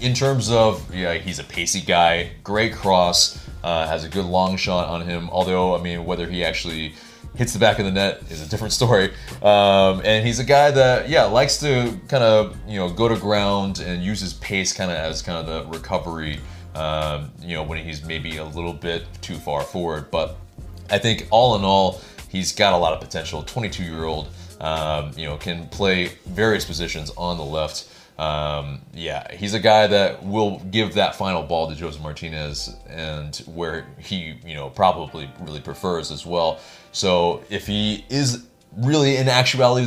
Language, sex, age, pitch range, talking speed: English, male, 30-49, 80-105 Hz, 195 wpm